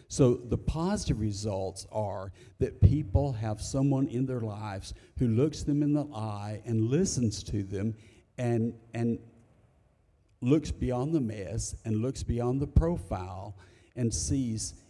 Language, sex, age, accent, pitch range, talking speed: English, male, 50-69, American, 105-125 Hz, 140 wpm